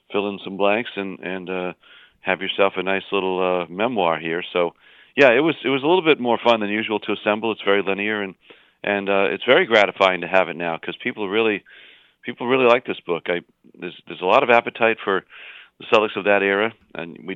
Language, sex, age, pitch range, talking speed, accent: English, male, 40-59, 90-100 Hz, 230 wpm, American